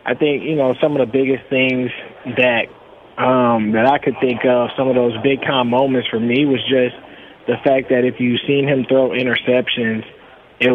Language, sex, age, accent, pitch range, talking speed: English, male, 20-39, American, 125-135 Hz, 205 wpm